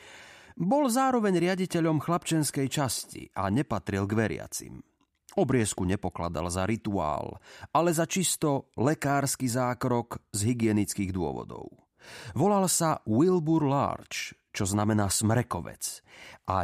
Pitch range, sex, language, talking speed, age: 100-140 Hz, male, Slovak, 105 wpm, 30-49